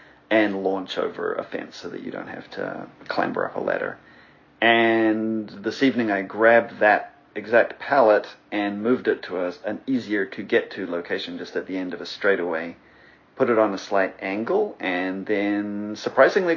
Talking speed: 170 wpm